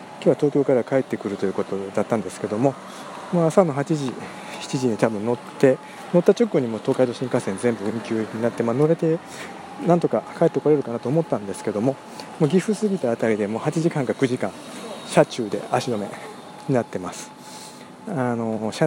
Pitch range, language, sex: 110-155 Hz, Japanese, male